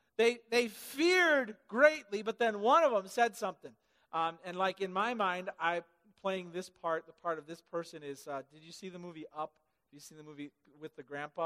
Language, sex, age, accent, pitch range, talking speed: English, male, 50-69, American, 180-275 Hz, 220 wpm